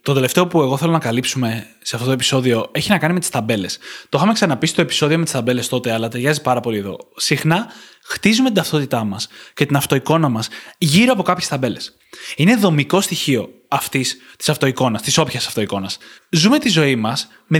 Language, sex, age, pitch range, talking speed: Greek, male, 20-39, 135-185 Hz, 195 wpm